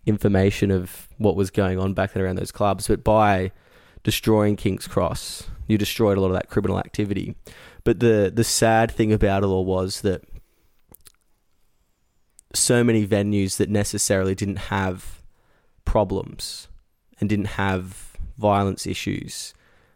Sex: male